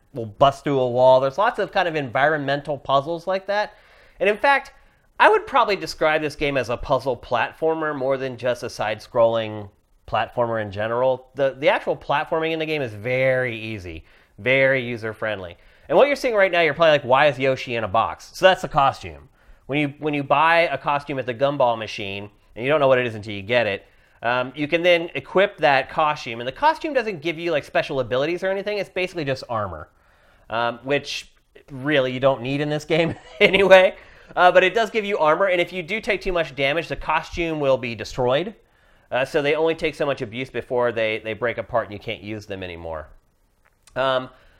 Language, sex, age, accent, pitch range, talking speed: English, male, 30-49, American, 120-165 Hz, 215 wpm